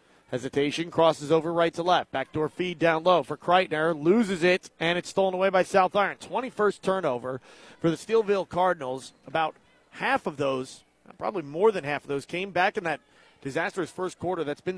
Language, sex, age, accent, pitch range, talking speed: English, male, 30-49, American, 160-195 Hz, 185 wpm